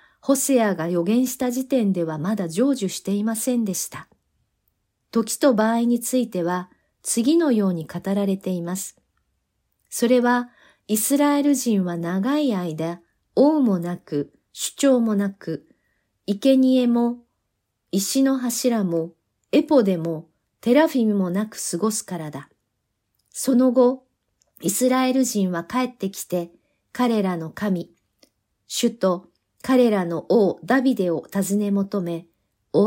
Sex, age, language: female, 40-59, Japanese